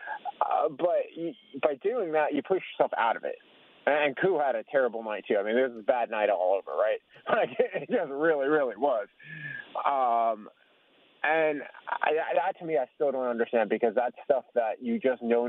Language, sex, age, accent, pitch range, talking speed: English, male, 30-49, American, 115-165 Hz, 205 wpm